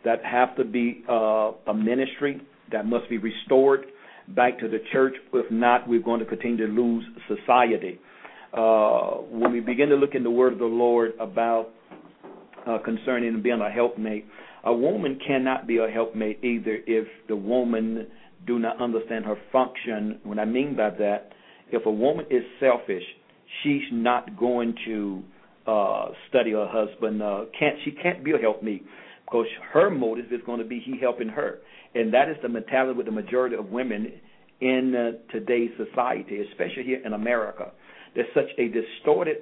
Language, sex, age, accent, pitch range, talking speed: English, male, 50-69, American, 110-130 Hz, 175 wpm